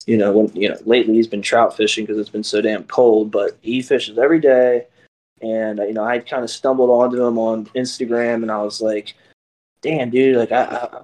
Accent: American